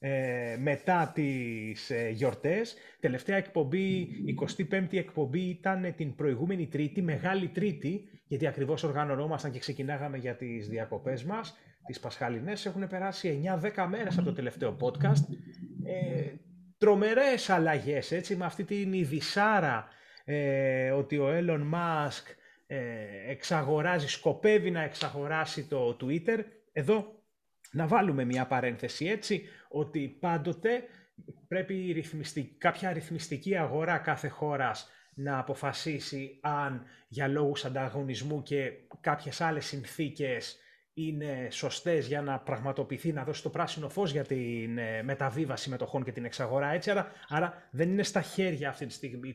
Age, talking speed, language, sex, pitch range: 30-49, 120 wpm, Greek, male, 135-185 Hz